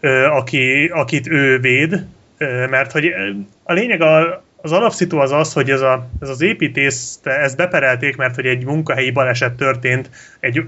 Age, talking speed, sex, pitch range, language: 30-49, 150 wpm, male, 130-160 Hz, Hungarian